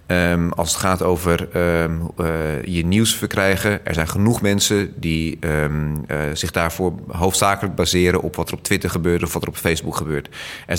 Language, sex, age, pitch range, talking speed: Dutch, male, 30-49, 80-95 Hz, 175 wpm